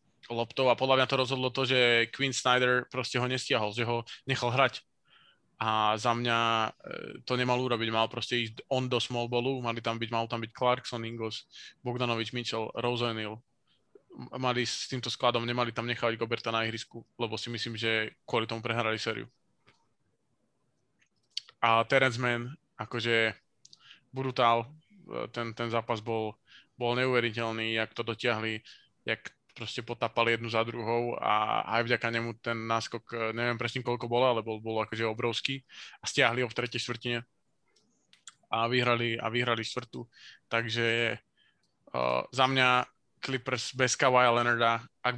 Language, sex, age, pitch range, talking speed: Slovak, male, 20-39, 115-125 Hz, 145 wpm